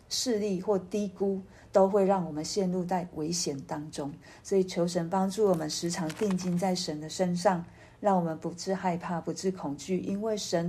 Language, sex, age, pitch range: Chinese, female, 40-59, 165-205 Hz